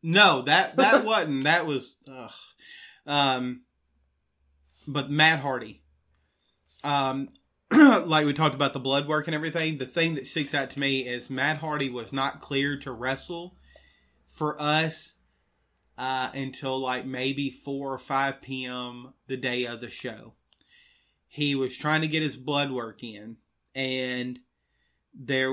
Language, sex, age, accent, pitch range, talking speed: English, male, 30-49, American, 130-150 Hz, 145 wpm